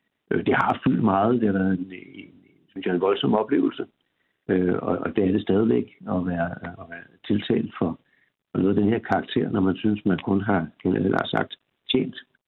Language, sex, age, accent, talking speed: Danish, male, 60-79, native, 195 wpm